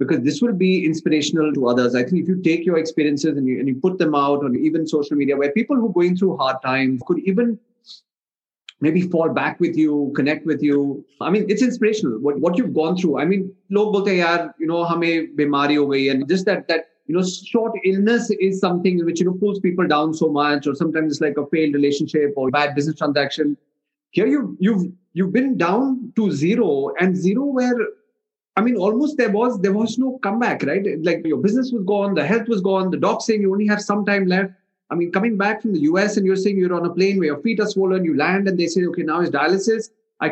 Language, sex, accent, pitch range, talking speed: English, male, Indian, 160-205 Hz, 235 wpm